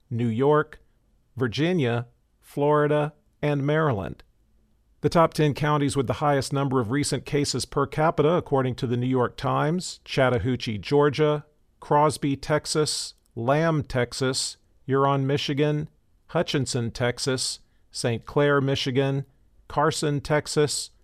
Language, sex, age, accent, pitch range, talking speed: English, male, 50-69, American, 120-150 Hz, 115 wpm